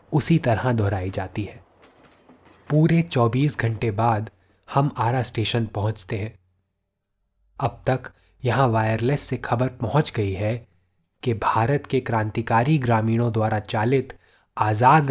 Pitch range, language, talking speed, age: 100-125 Hz, Hindi, 125 wpm, 20-39